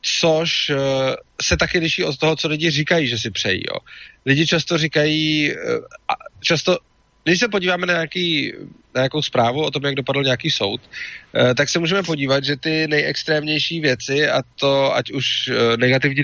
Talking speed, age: 160 wpm, 30-49